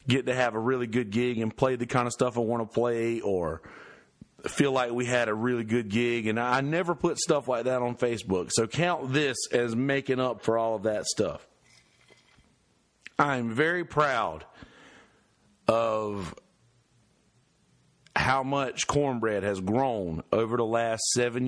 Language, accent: English, American